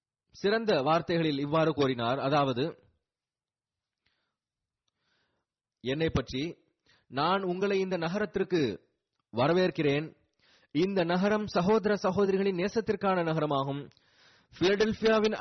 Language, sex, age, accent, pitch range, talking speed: Tamil, male, 30-49, native, 135-200 Hz, 75 wpm